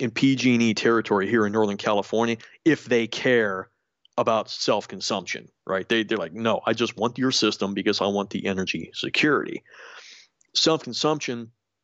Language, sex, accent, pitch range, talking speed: English, male, American, 105-125 Hz, 145 wpm